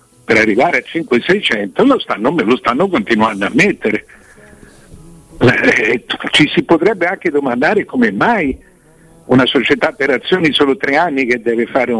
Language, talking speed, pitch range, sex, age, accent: Italian, 140 wpm, 115-180 Hz, male, 60-79, native